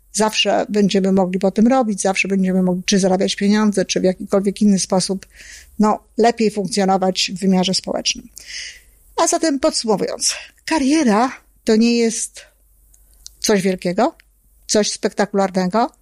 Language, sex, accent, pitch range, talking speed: Polish, female, native, 195-230 Hz, 125 wpm